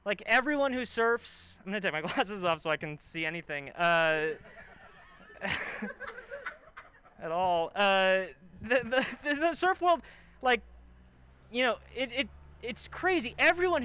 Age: 20-39